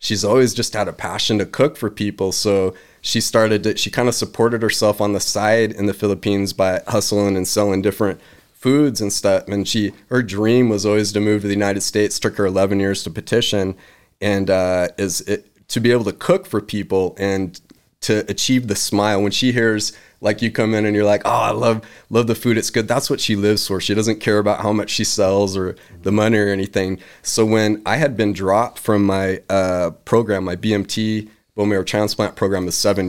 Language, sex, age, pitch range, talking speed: English, male, 20-39, 95-110 Hz, 220 wpm